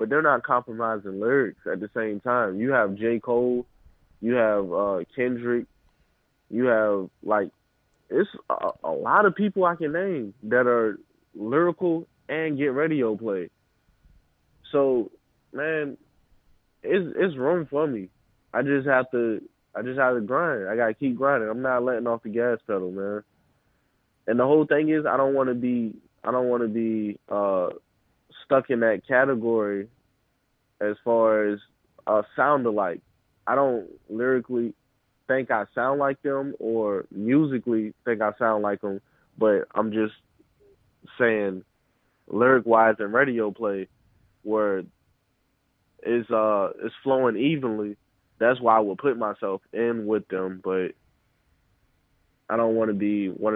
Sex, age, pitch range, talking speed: male, 20-39, 105-130 Hz, 150 wpm